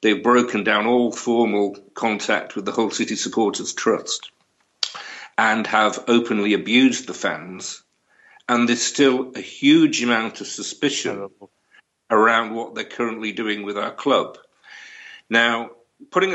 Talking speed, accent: 130 wpm, British